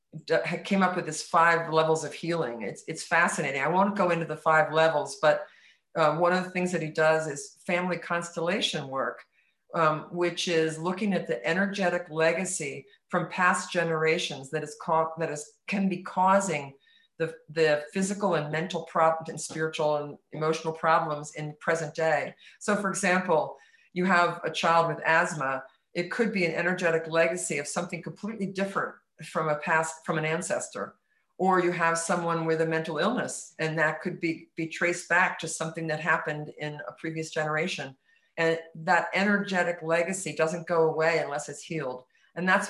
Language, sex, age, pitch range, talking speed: English, female, 50-69, 155-175 Hz, 175 wpm